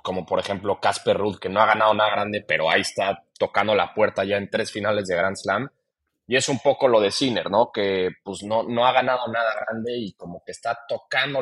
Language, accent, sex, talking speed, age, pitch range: Spanish, Mexican, male, 235 wpm, 30-49, 95-120 Hz